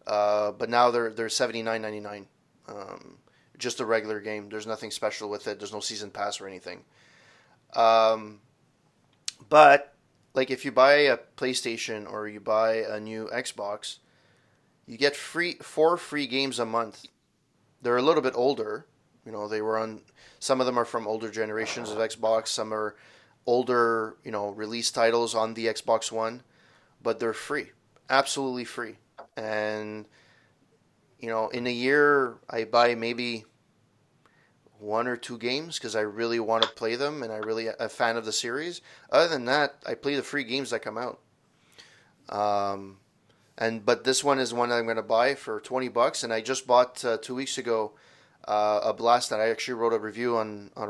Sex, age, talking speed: male, 20-39, 185 wpm